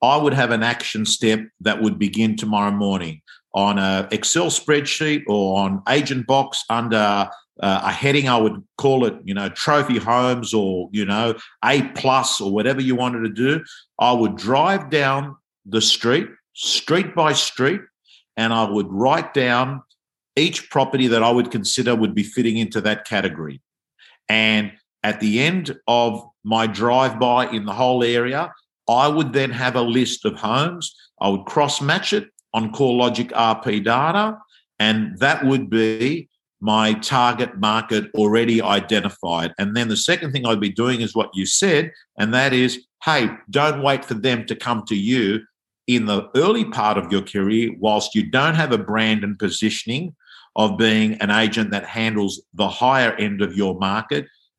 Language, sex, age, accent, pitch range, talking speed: English, male, 50-69, Australian, 105-130 Hz, 170 wpm